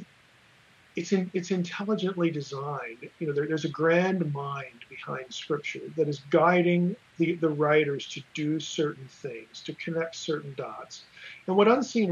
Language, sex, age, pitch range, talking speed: English, male, 50-69, 150-195 Hz, 155 wpm